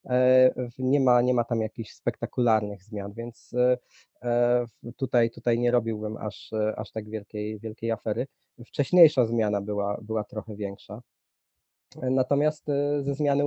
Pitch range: 110-135 Hz